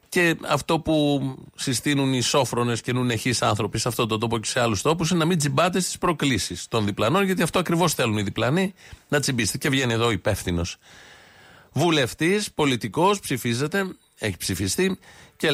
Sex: male